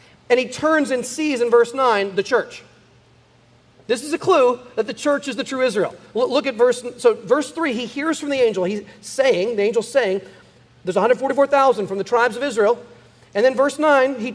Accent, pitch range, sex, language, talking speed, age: American, 215-275 Hz, male, English, 205 wpm, 40-59